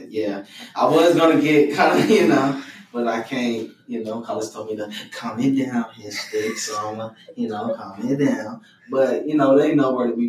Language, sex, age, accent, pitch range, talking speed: English, male, 10-29, American, 105-120 Hz, 205 wpm